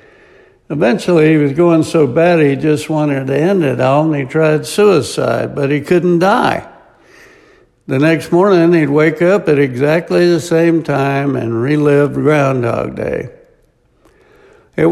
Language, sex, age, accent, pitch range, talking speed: English, male, 60-79, American, 140-180 Hz, 150 wpm